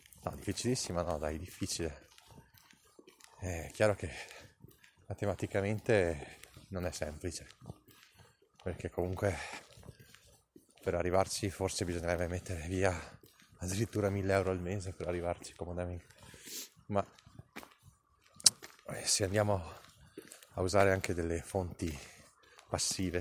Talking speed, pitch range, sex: 95 wpm, 85-100 Hz, male